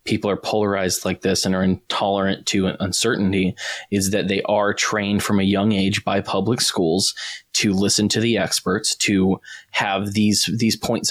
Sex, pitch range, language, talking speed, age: male, 95-110 Hz, English, 175 wpm, 20-39